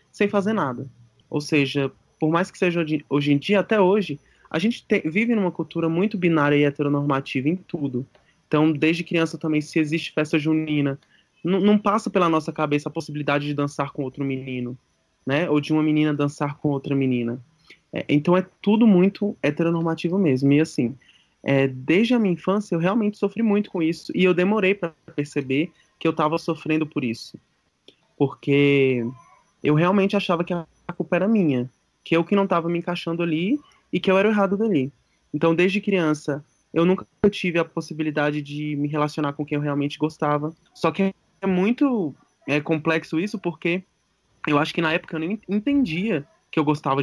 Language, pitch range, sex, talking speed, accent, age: Portuguese, 145-185 Hz, male, 190 wpm, Brazilian, 20-39